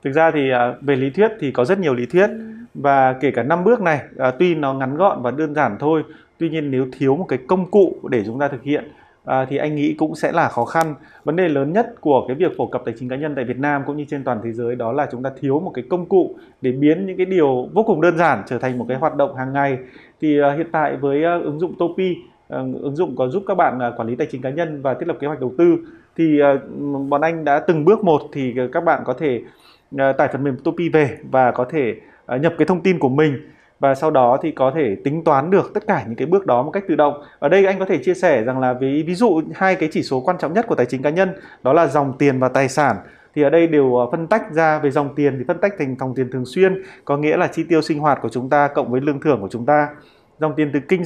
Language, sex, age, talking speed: Vietnamese, male, 20-39, 275 wpm